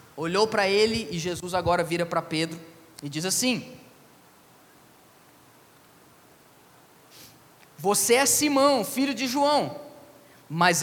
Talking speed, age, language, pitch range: 105 wpm, 20-39, Portuguese, 155-215 Hz